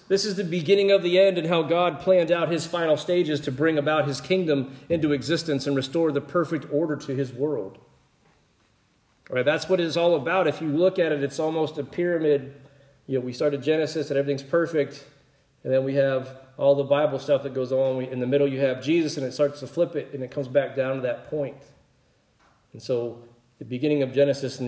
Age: 40-59